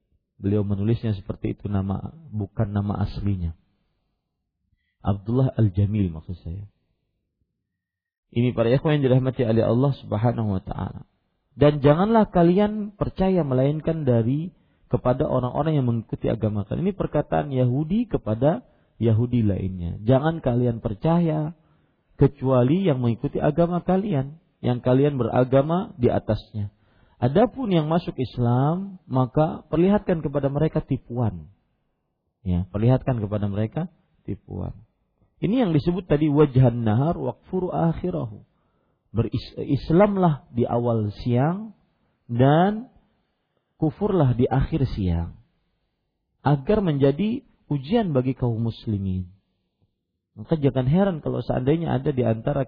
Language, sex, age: Malay, male, 40-59